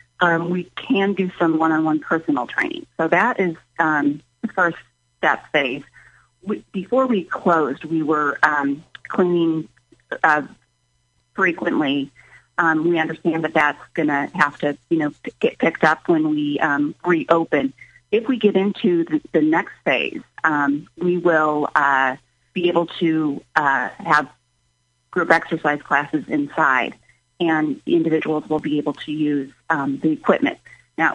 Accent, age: American, 30-49